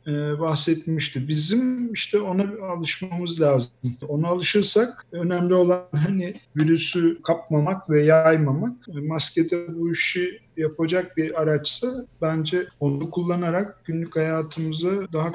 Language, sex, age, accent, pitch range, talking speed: Turkish, male, 50-69, native, 145-170 Hz, 105 wpm